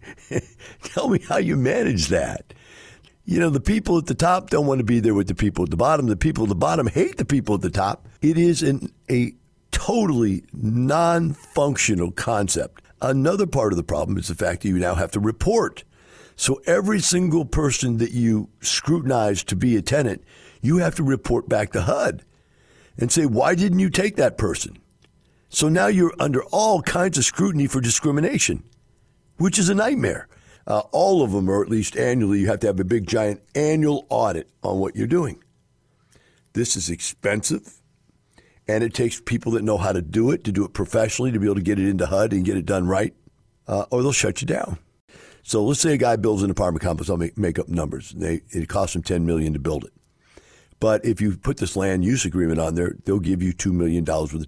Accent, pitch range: American, 95-140 Hz